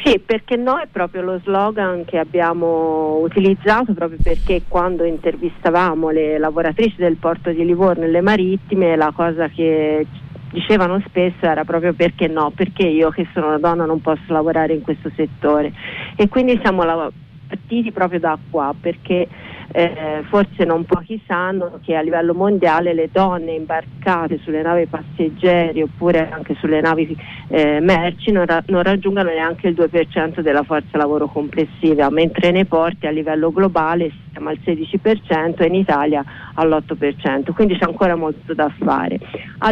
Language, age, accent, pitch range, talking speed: Italian, 40-59, native, 160-185 Hz, 155 wpm